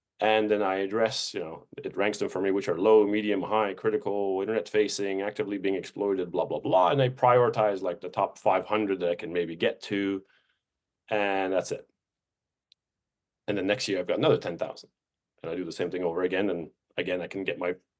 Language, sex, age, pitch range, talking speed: English, male, 30-49, 100-140 Hz, 210 wpm